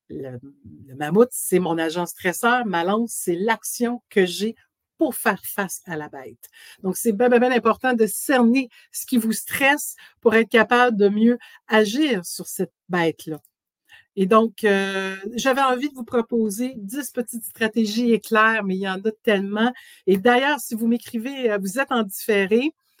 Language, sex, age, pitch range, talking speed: French, female, 60-79, 185-240 Hz, 170 wpm